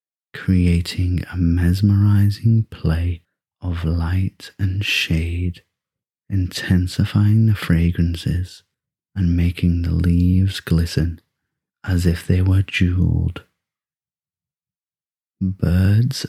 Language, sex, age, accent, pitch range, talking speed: English, male, 30-49, British, 85-95 Hz, 80 wpm